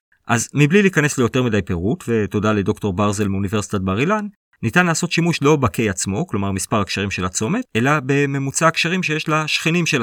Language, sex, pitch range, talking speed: Hebrew, male, 105-155 Hz, 175 wpm